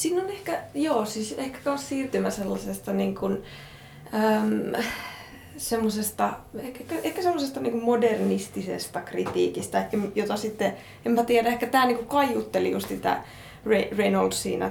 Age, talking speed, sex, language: 20-39, 130 wpm, female, Finnish